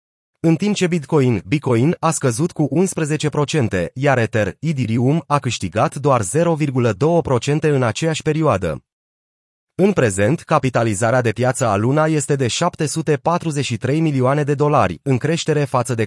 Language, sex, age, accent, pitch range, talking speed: Romanian, male, 30-49, native, 115-150 Hz, 135 wpm